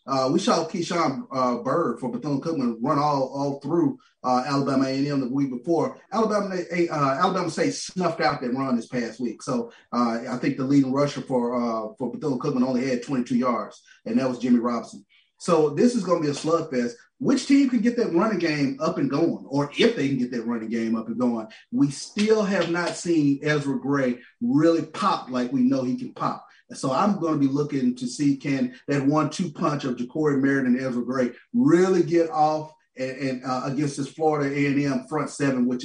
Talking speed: 210 wpm